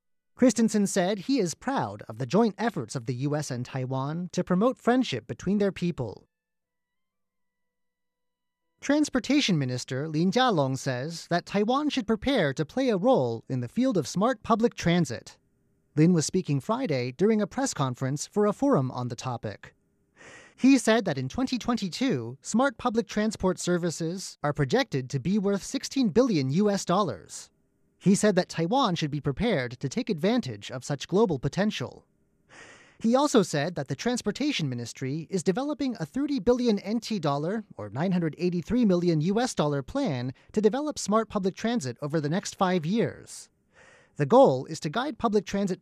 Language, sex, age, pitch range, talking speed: English, male, 30-49, 140-235 Hz, 160 wpm